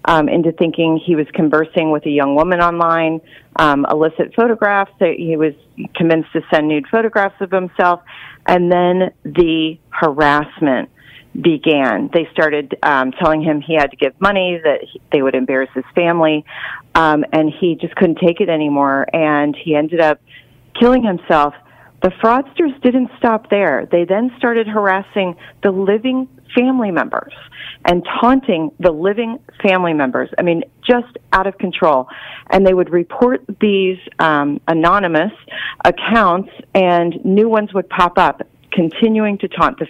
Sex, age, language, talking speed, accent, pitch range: female, 40-59, English, 155 wpm, American, 155-195 Hz